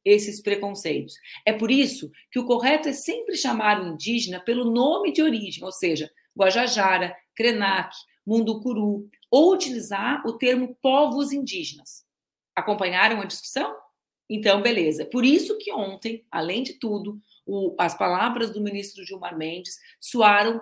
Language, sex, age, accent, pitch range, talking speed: Portuguese, female, 40-59, Brazilian, 190-245 Hz, 135 wpm